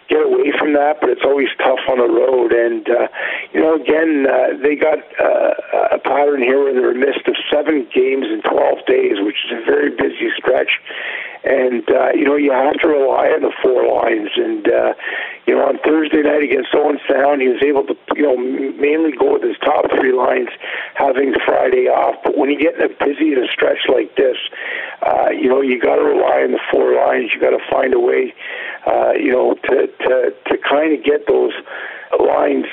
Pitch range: 295-425 Hz